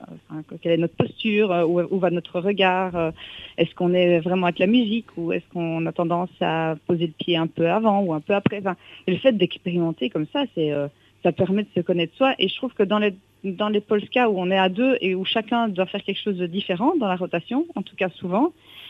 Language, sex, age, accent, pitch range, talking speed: French, female, 40-59, French, 170-215 Hz, 240 wpm